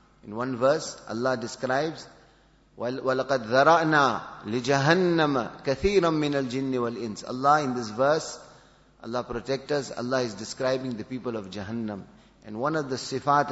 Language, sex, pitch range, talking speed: English, male, 115-140 Hz, 105 wpm